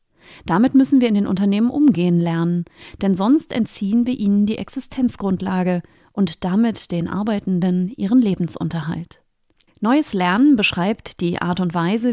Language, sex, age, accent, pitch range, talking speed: German, female, 30-49, German, 185-235 Hz, 140 wpm